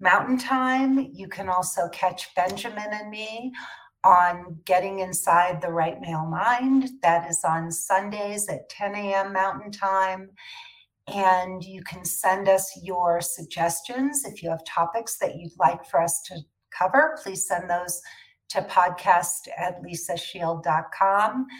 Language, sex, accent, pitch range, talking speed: English, female, American, 170-220 Hz, 140 wpm